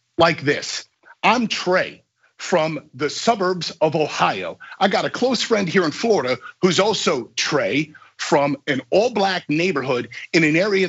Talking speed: 155 wpm